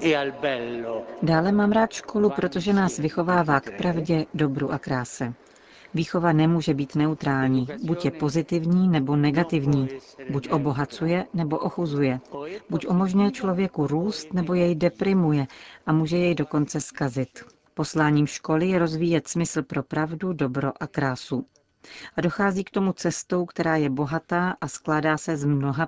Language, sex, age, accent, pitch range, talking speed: Czech, female, 40-59, native, 145-175 Hz, 140 wpm